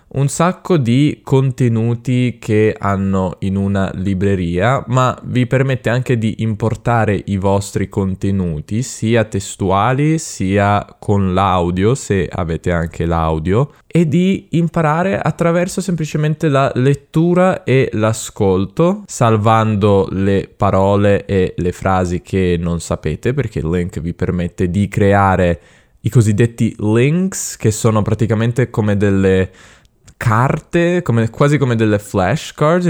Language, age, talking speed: Italian, 10-29, 120 wpm